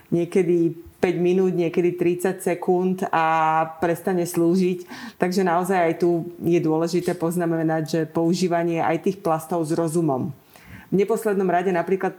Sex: female